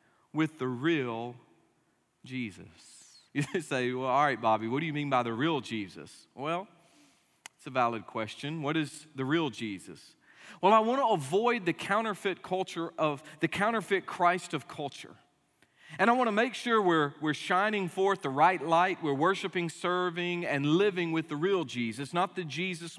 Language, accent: English, American